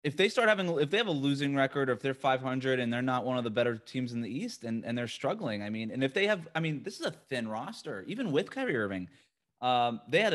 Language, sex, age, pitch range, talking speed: English, male, 20-39, 115-150 Hz, 285 wpm